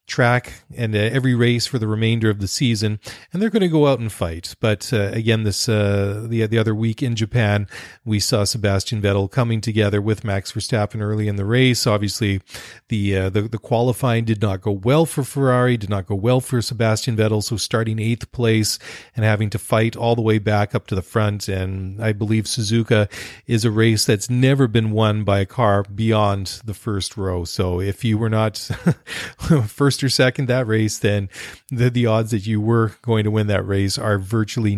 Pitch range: 100-120 Hz